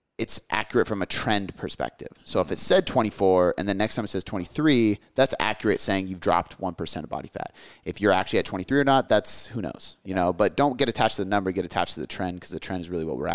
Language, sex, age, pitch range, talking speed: English, male, 30-49, 90-115 Hz, 260 wpm